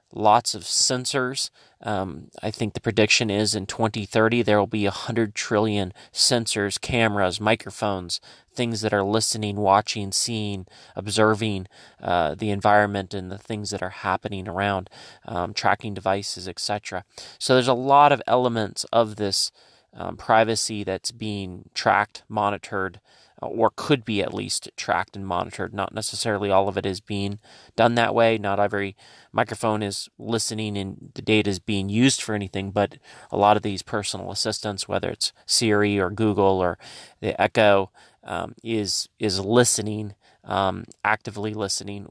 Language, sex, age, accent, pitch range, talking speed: English, male, 30-49, American, 100-110 Hz, 150 wpm